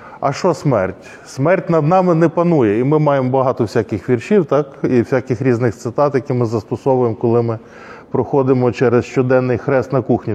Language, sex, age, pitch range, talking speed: Ukrainian, male, 20-39, 115-145 Hz, 175 wpm